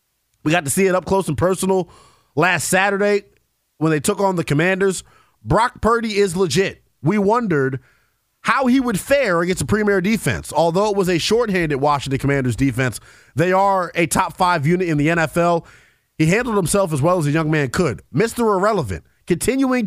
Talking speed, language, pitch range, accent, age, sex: 180 wpm, English, 145-200 Hz, American, 30-49, male